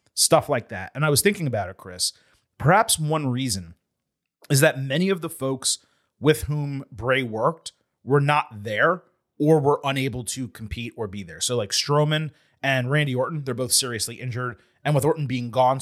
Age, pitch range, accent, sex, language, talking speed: 30-49, 110-140 Hz, American, male, English, 185 wpm